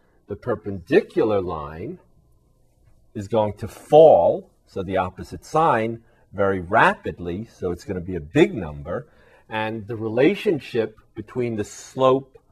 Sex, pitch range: male, 95-125 Hz